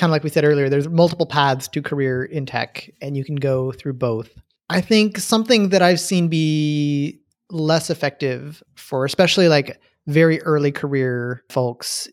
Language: English